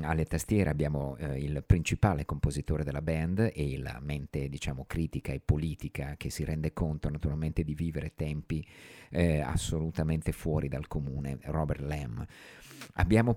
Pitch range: 75-90 Hz